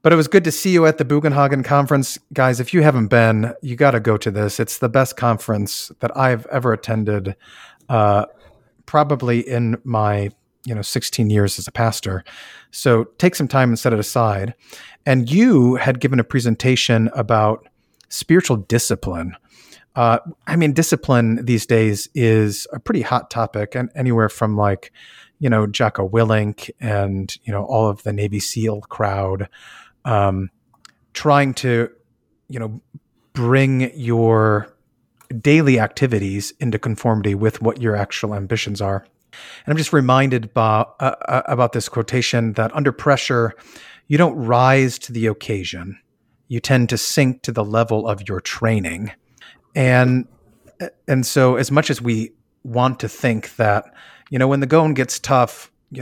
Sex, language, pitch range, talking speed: male, English, 110-130 Hz, 160 wpm